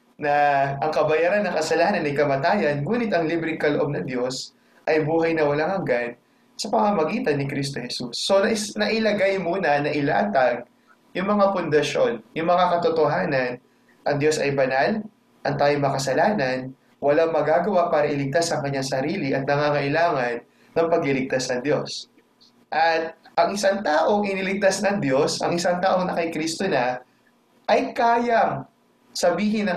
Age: 20-39